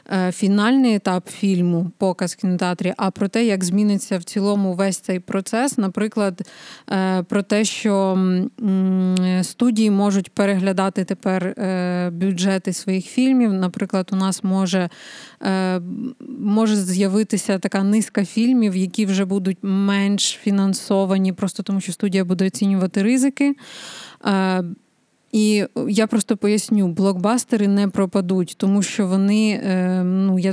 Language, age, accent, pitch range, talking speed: Ukrainian, 20-39, native, 190-215 Hz, 120 wpm